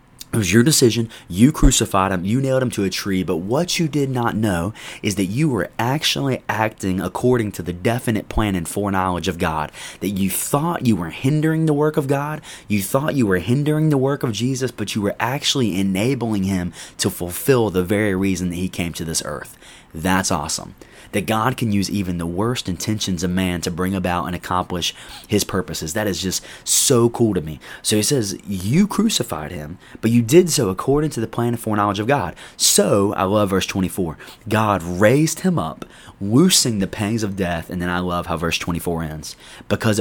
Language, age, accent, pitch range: English, 20-39, American, 90-120 Hz